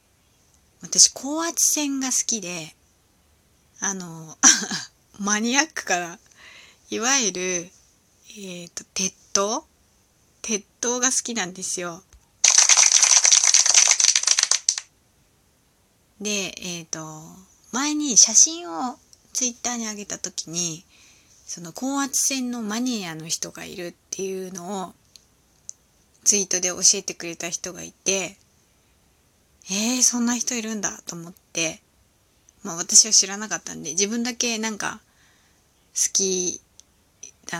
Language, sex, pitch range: Japanese, female, 170-230 Hz